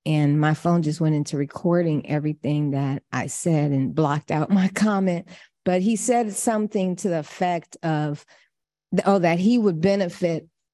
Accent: American